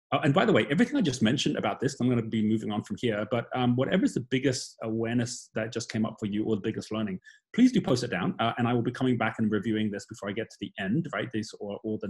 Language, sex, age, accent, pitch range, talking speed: English, male, 30-49, British, 110-130 Hz, 300 wpm